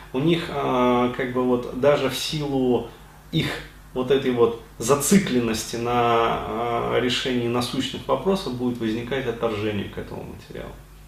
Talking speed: 125 wpm